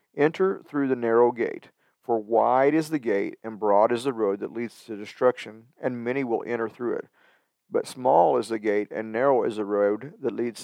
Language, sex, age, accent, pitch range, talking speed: English, male, 50-69, American, 110-140 Hz, 210 wpm